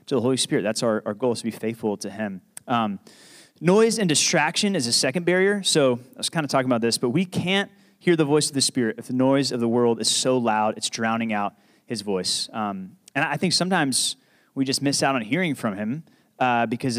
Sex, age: male, 30-49